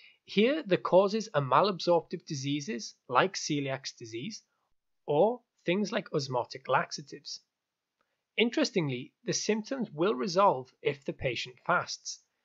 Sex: male